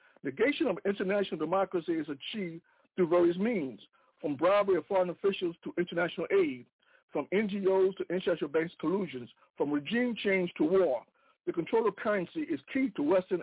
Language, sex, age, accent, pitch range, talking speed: English, male, 60-79, American, 170-235 Hz, 160 wpm